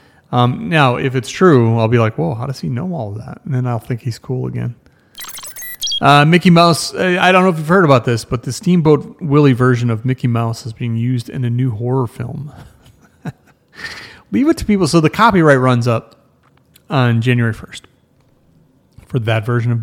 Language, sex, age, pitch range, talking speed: English, male, 30-49, 120-150 Hz, 200 wpm